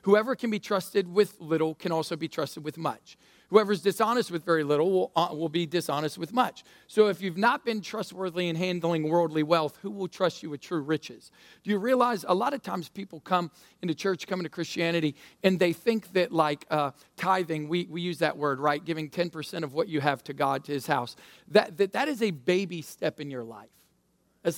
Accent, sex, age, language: American, male, 50-69, English